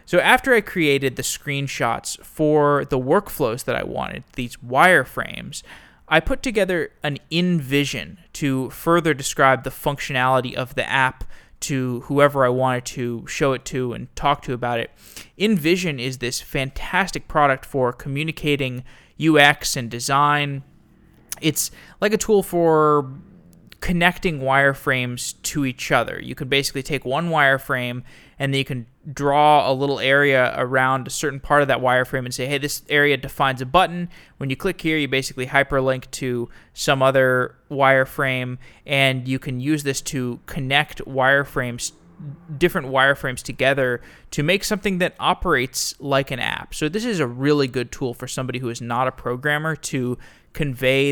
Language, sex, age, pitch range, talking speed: English, male, 20-39, 130-150 Hz, 160 wpm